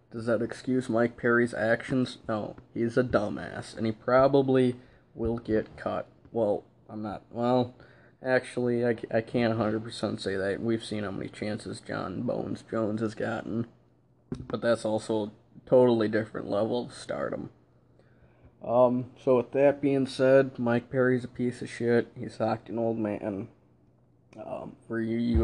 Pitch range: 110-125 Hz